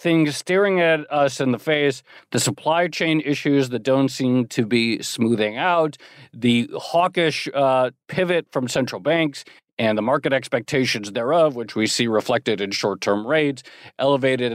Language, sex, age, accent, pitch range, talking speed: English, male, 50-69, American, 120-160 Hz, 155 wpm